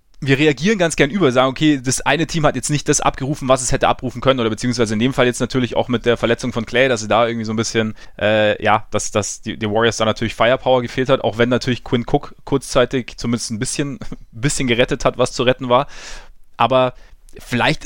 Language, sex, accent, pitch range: German, male, German, 115-135 Hz